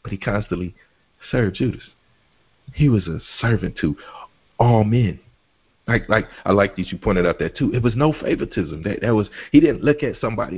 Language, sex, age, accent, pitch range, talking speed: English, male, 40-59, American, 90-120 Hz, 195 wpm